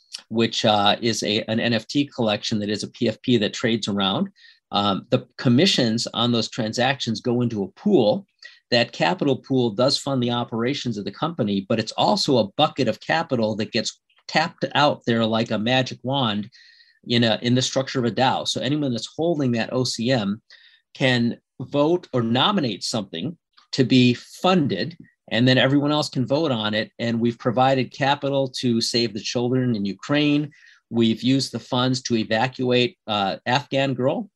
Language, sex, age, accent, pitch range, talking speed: English, male, 50-69, American, 110-130 Hz, 175 wpm